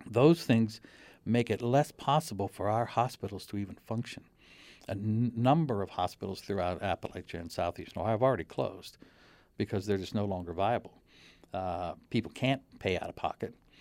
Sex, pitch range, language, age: male, 100-125 Hz, English, 60-79